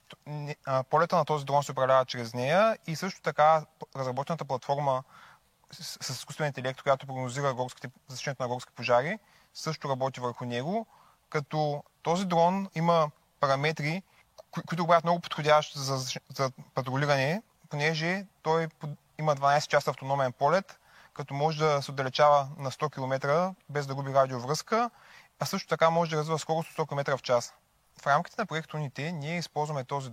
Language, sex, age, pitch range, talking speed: Bulgarian, male, 20-39, 130-160 Hz, 160 wpm